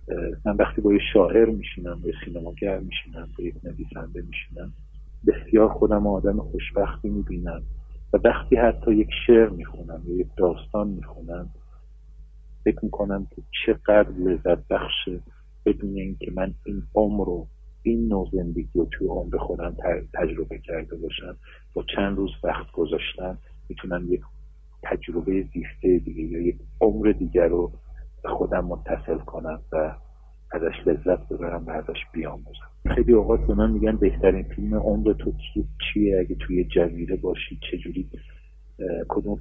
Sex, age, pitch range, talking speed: male, 50-69, 75-100 Hz, 135 wpm